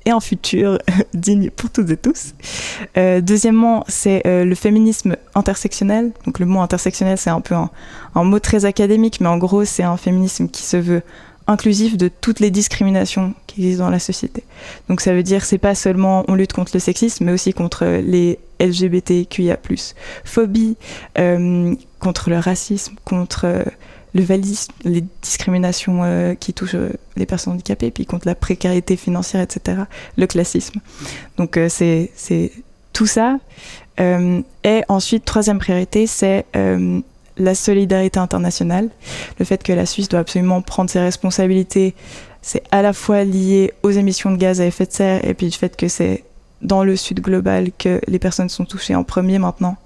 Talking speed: 175 wpm